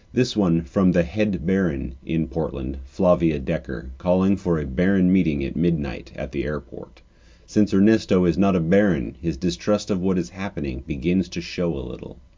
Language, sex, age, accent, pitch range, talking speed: English, male, 30-49, American, 80-100 Hz, 180 wpm